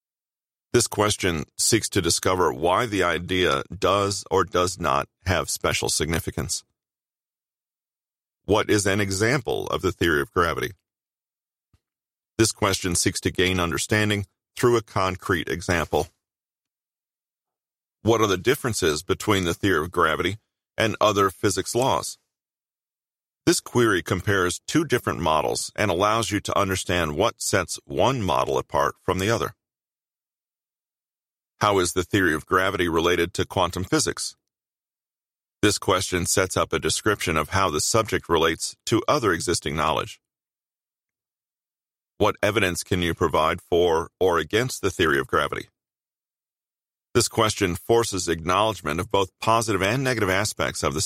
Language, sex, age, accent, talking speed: English, male, 40-59, American, 135 wpm